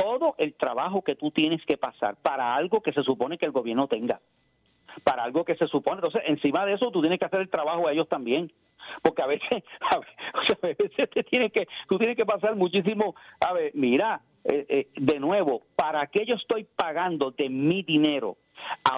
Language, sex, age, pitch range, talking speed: Spanish, male, 50-69, 145-210 Hz, 200 wpm